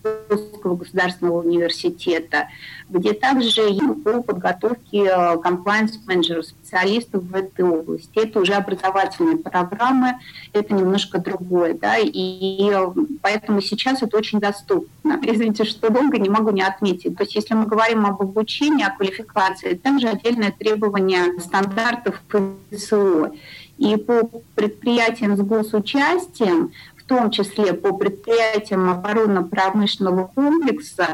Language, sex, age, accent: Russian, female, 30-49, native